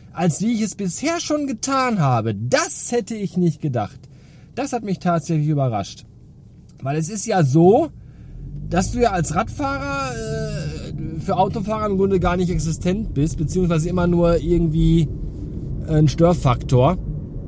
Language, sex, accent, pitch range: German, male, German, 145-230 Hz